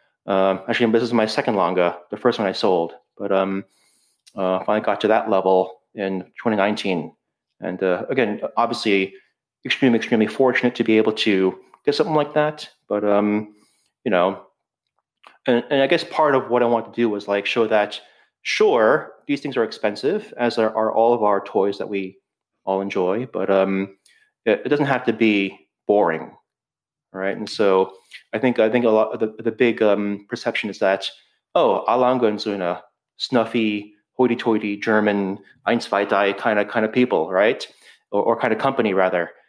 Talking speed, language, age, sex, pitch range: 175 wpm, English, 30-49, male, 100-120 Hz